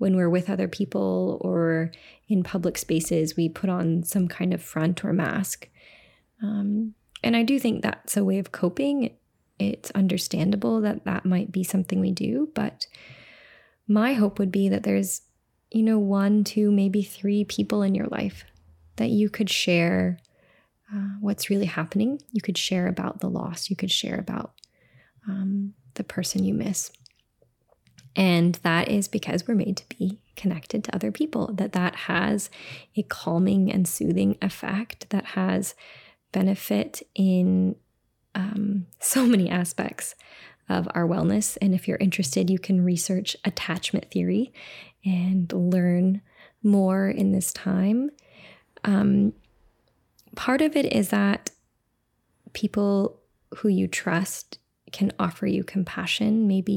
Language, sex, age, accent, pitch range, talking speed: English, female, 20-39, American, 180-210 Hz, 145 wpm